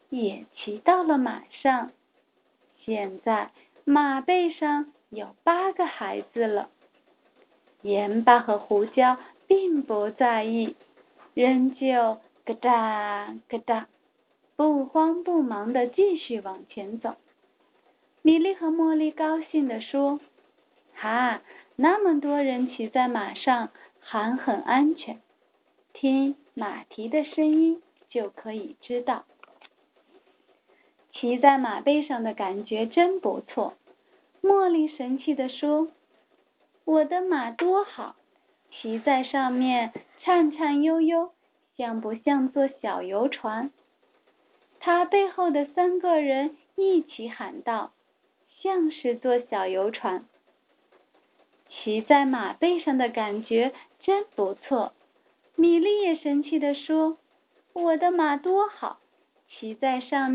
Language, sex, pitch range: Chinese, female, 235-325 Hz